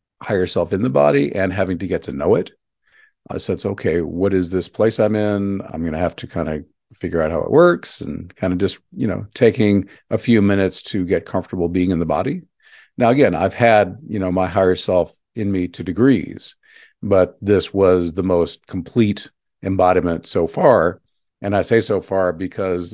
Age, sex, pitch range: 50-69, male, 90-100 Hz